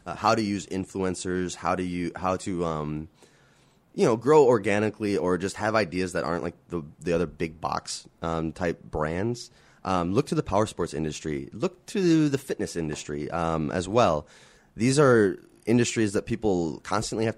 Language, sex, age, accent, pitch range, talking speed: English, male, 20-39, American, 80-100 Hz, 180 wpm